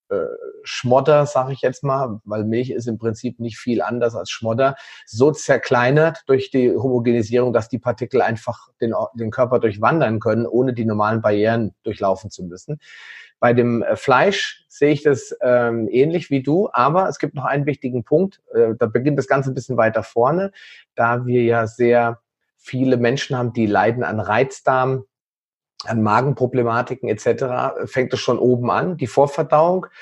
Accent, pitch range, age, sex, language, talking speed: German, 115-145 Hz, 30-49, male, German, 165 wpm